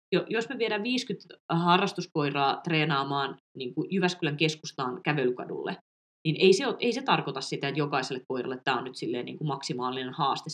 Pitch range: 145-185 Hz